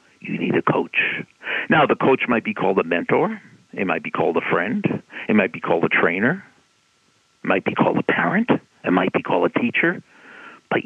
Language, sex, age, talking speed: English, male, 50-69, 205 wpm